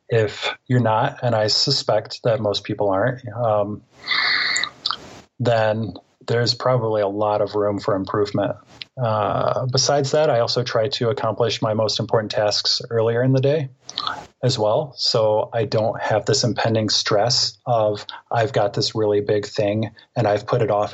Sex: male